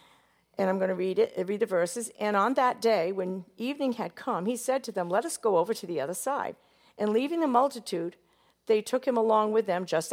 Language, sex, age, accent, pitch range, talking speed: English, female, 50-69, American, 170-235 Hz, 235 wpm